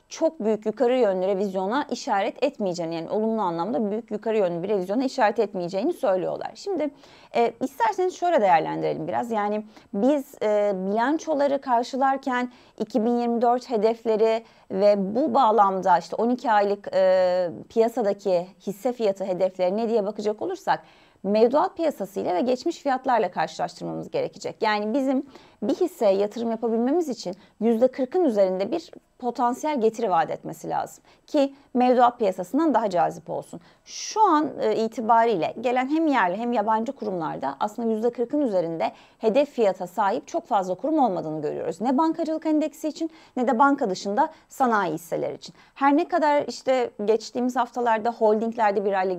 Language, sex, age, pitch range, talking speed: Turkish, female, 30-49, 200-275 Hz, 140 wpm